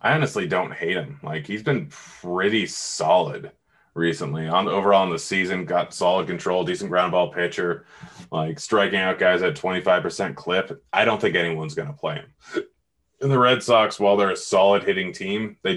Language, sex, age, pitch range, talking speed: English, male, 30-49, 85-105 Hz, 185 wpm